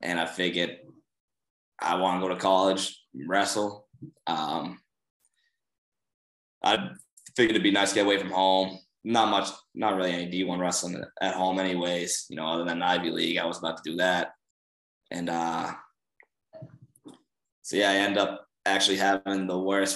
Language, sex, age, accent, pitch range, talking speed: English, male, 20-39, American, 90-100 Hz, 165 wpm